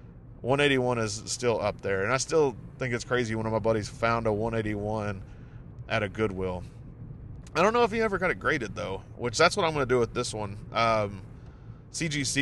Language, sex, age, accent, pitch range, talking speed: English, male, 20-39, American, 105-125 Hz, 210 wpm